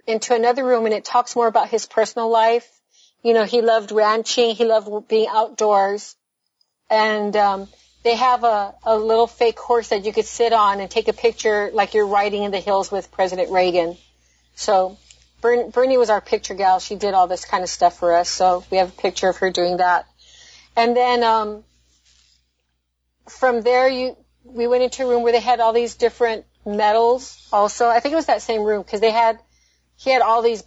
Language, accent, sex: English, American, female